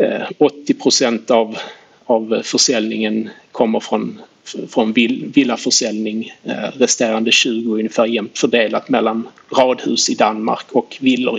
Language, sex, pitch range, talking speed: Swedish, male, 115-145 Hz, 105 wpm